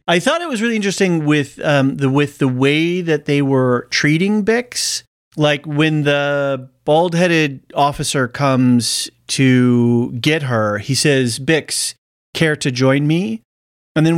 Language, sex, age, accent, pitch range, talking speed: English, male, 30-49, American, 125-160 Hz, 150 wpm